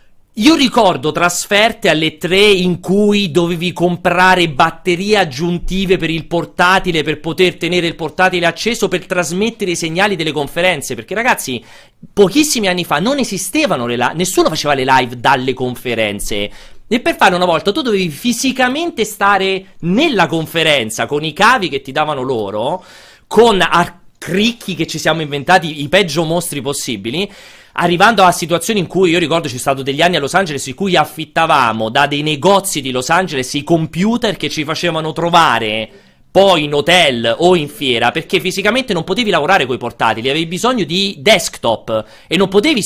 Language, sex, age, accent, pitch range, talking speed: Italian, male, 40-59, native, 145-190 Hz, 170 wpm